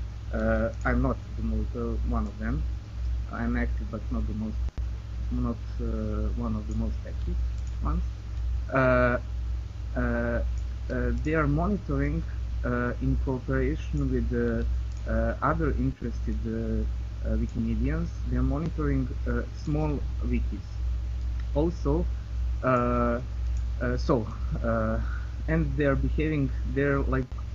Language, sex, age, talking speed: English, male, 20-39, 125 wpm